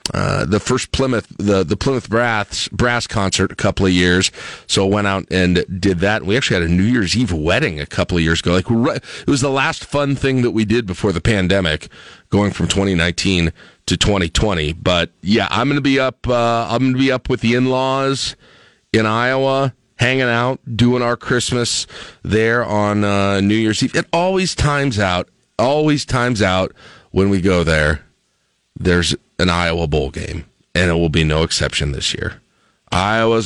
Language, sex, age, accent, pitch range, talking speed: English, male, 40-59, American, 85-125 Hz, 190 wpm